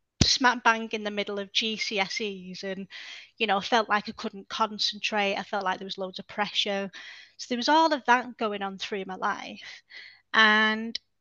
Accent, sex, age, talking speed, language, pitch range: British, female, 20-39, 195 wpm, English, 200-230 Hz